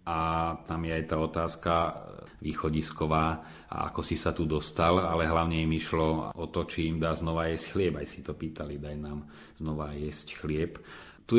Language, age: Slovak, 40-59